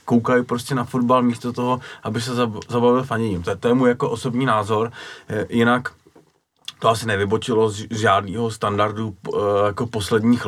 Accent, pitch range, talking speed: native, 100-110 Hz, 145 wpm